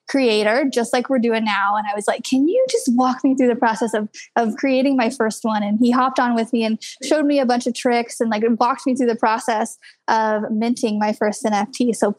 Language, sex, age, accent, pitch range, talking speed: English, female, 20-39, American, 230-275 Hz, 245 wpm